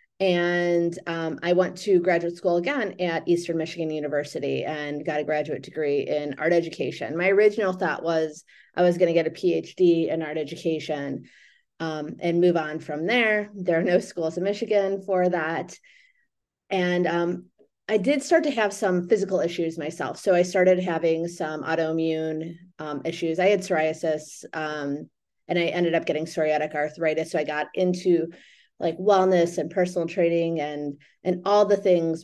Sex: female